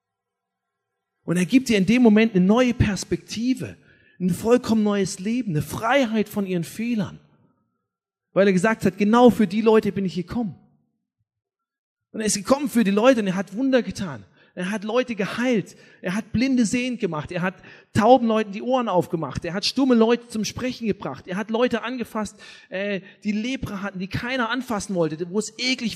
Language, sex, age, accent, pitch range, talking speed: German, male, 40-59, German, 185-230 Hz, 185 wpm